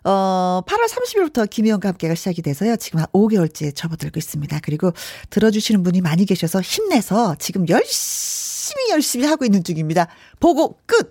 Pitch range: 180-275 Hz